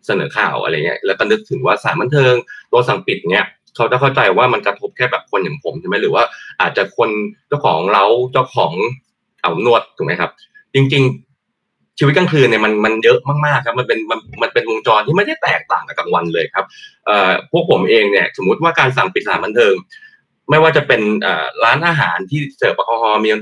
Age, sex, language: 20-39, male, Thai